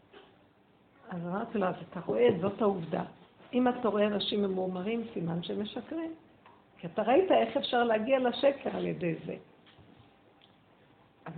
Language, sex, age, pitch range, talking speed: Hebrew, female, 50-69, 190-245 Hz, 140 wpm